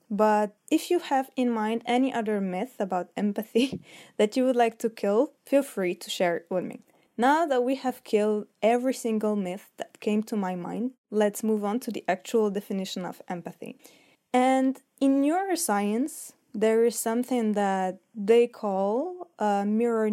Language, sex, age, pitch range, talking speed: English, female, 20-39, 200-245 Hz, 170 wpm